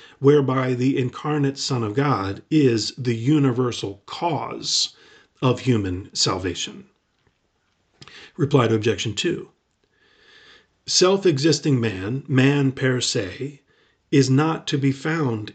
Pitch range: 115-150 Hz